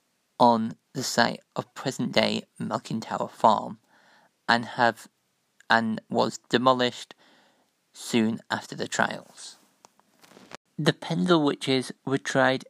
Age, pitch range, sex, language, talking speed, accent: 50-69, 120-140 Hz, male, English, 105 wpm, British